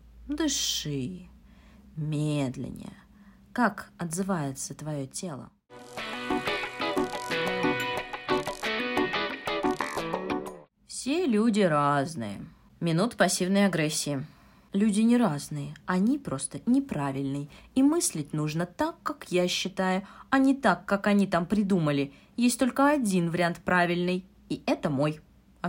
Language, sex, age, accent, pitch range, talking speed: Russian, female, 30-49, native, 150-225 Hz, 95 wpm